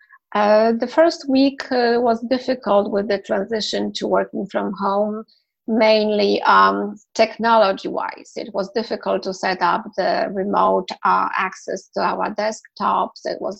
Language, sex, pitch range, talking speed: English, female, 185-230 Hz, 140 wpm